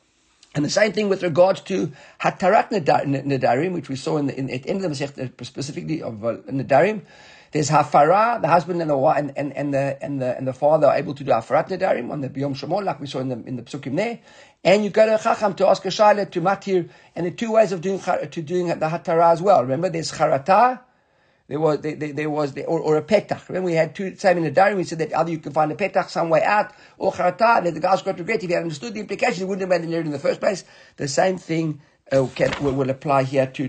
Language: English